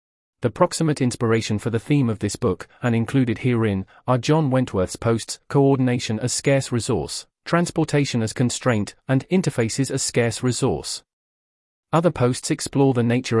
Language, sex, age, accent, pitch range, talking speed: English, male, 40-59, British, 110-145 Hz, 150 wpm